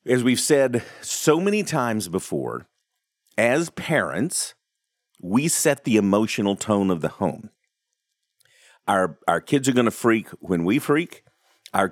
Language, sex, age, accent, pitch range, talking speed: English, male, 40-59, American, 95-150 Hz, 140 wpm